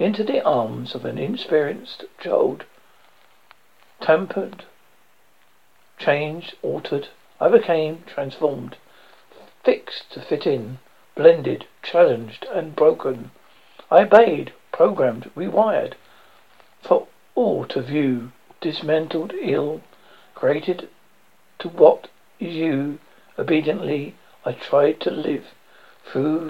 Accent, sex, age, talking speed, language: British, male, 60-79, 95 wpm, English